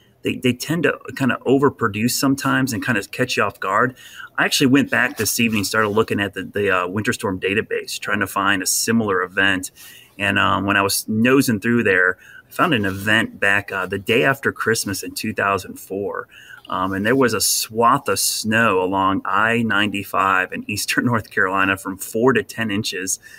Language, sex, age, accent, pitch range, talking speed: English, male, 30-49, American, 100-115 Hz, 190 wpm